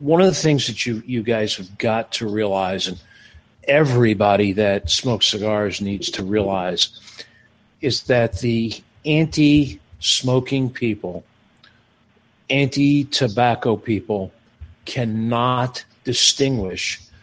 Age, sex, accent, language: 50-69, male, American, English